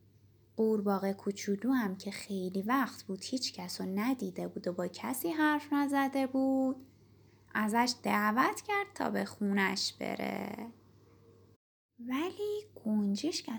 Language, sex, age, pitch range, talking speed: Persian, female, 10-29, 170-265 Hz, 115 wpm